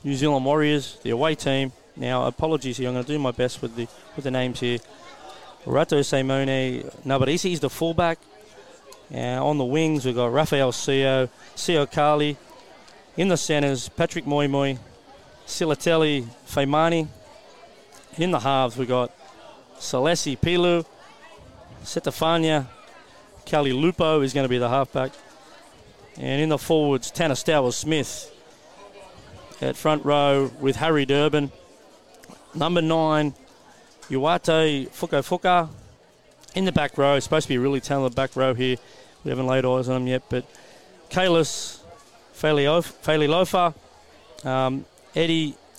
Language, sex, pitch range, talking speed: English, male, 130-160 Hz, 140 wpm